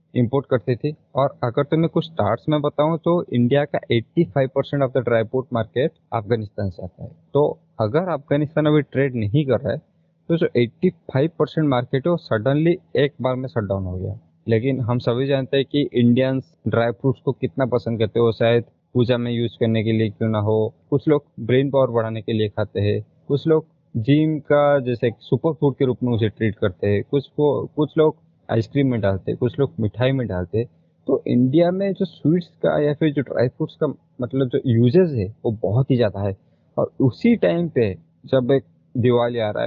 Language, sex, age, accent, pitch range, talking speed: Hindi, male, 20-39, native, 115-150 Hz, 185 wpm